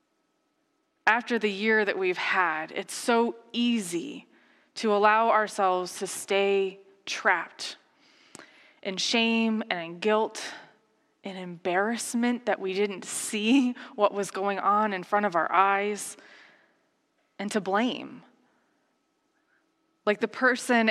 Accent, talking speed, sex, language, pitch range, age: American, 115 wpm, female, English, 200-315 Hz, 20-39